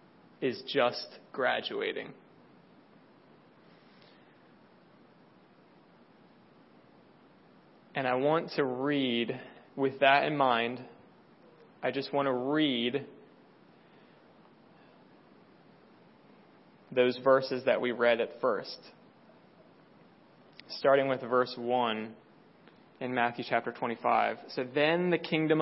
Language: English